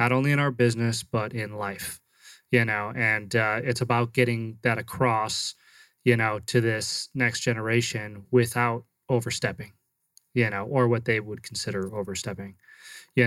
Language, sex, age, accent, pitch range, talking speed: English, male, 20-39, American, 115-125 Hz, 155 wpm